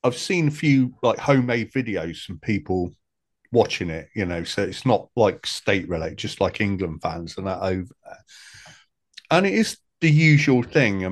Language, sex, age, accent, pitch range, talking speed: English, male, 40-59, British, 95-115 Hz, 185 wpm